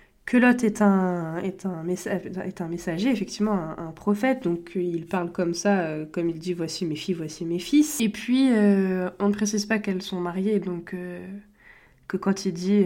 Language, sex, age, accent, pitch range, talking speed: English, female, 20-39, French, 180-210 Hz, 210 wpm